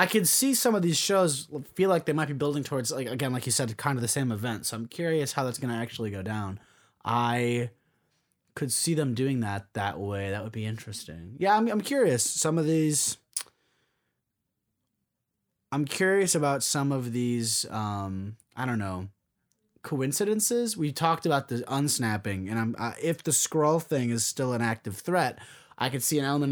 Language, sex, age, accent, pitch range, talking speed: English, male, 20-39, American, 115-150 Hz, 195 wpm